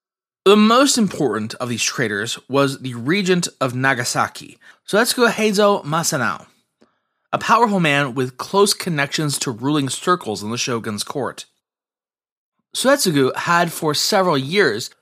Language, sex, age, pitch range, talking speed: English, male, 30-49, 130-200 Hz, 130 wpm